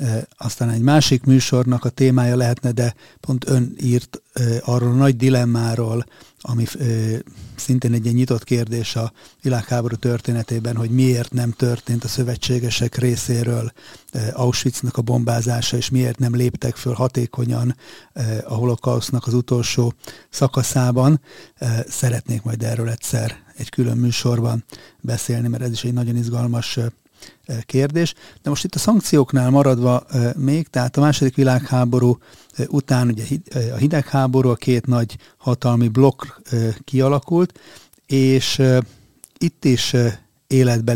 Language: Hungarian